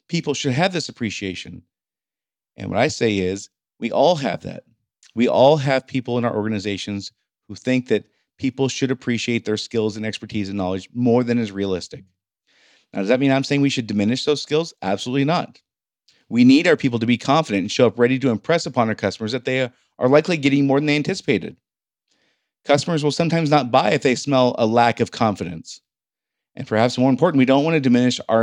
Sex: male